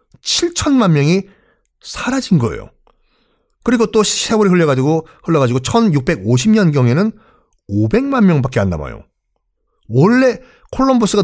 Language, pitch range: Korean, 125-205 Hz